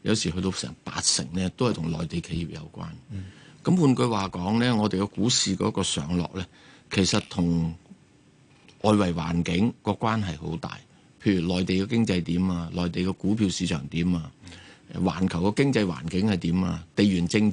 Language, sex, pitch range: Chinese, male, 85-105 Hz